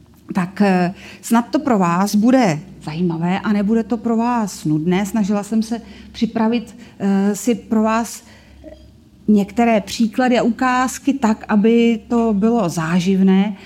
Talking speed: 125 wpm